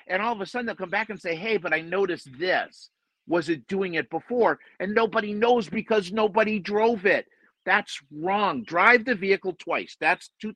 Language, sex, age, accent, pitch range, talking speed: English, male, 50-69, American, 175-215 Hz, 200 wpm